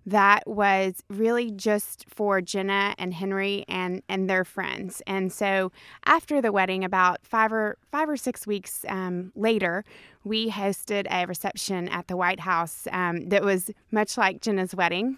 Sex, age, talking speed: female, 20-39, 160 wpm